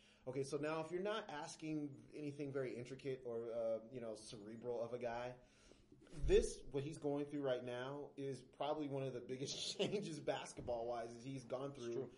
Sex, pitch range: male, 110-140 Hz